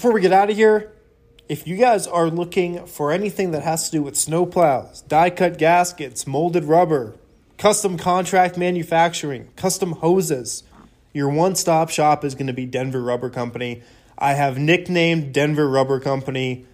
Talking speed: 160 wpm